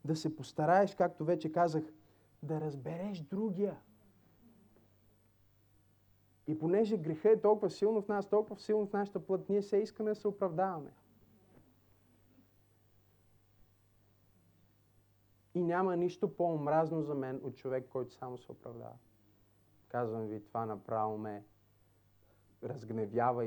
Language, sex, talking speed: Bulgarian, male, 120 wpm